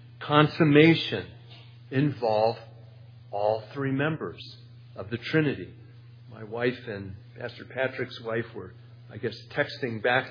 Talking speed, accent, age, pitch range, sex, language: 110 wpm, American, 50-69, 120-150 Hz, male, English